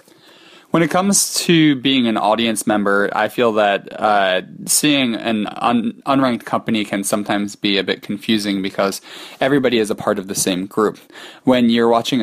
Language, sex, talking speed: English, male, 170 wpm